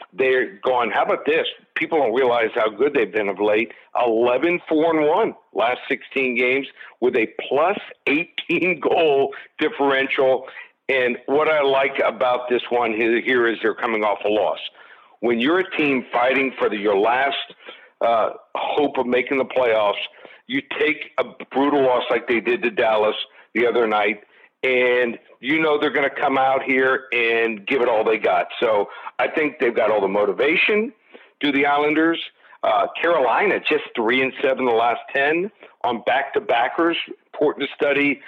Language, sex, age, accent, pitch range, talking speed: English, male, 60-79, American, 125-160 Hz, 170 wpm